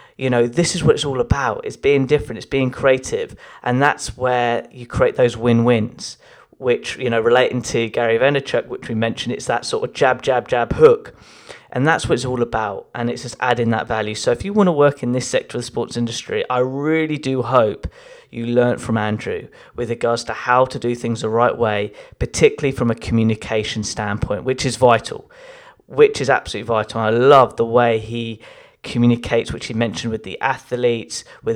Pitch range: 115-150 Hz